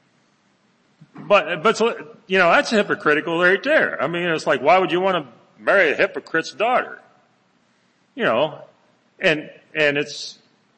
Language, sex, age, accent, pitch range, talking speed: English, male, 40-59, American, 135-225 Hz, 145 wpm